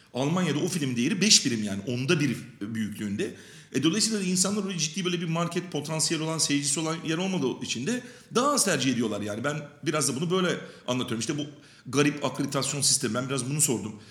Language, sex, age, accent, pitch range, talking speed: Turkish, male, 40-59, native, 125-175 Hz, 195 wpm